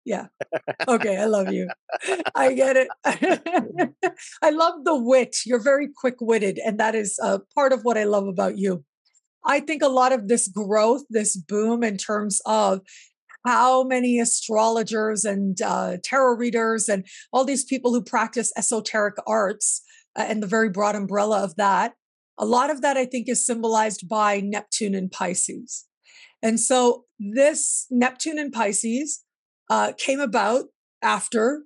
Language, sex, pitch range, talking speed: English, female, 215-255 Hz, 160 wpm